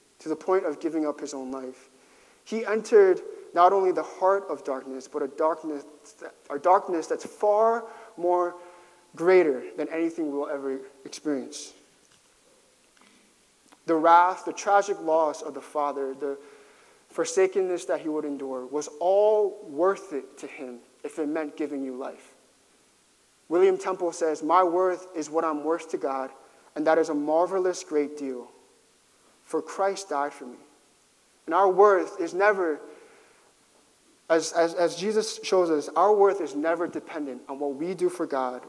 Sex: male